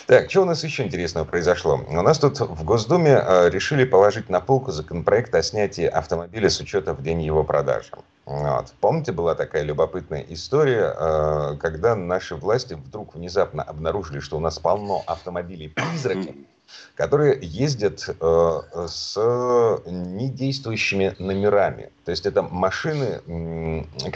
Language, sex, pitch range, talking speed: Russian, male, 80-125 Hz, 125 wpm